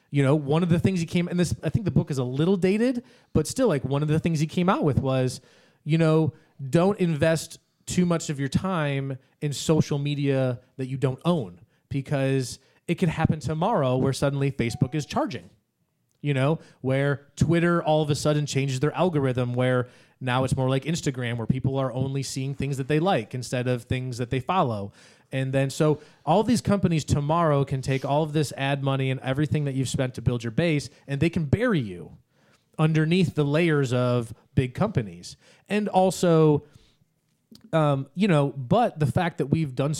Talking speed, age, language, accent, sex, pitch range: 200 wpm, 30-49, English, American, male, 130-160 Hz